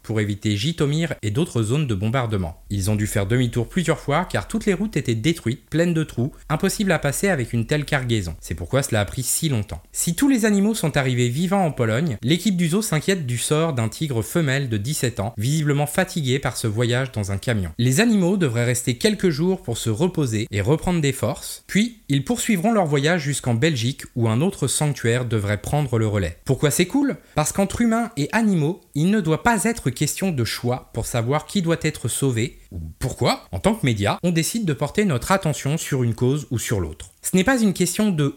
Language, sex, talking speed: French, male, 220 wpm